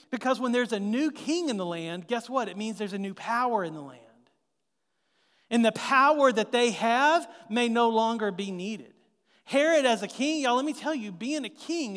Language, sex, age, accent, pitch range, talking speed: English, male, 40-59, American, 185-245 Hz, 215 wpm